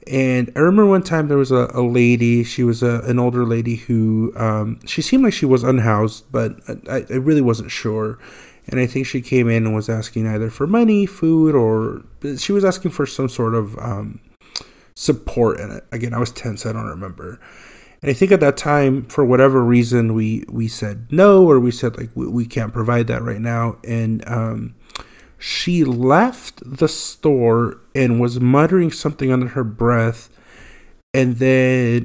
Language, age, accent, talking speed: English, 30-49, American, 185 wpm